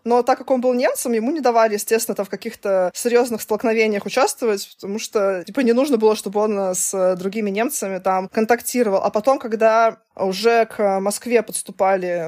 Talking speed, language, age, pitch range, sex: 175 wpm, Russian, 20-39, 205-250 Hz, female